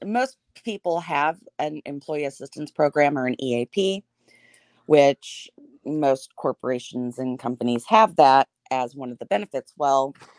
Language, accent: English, American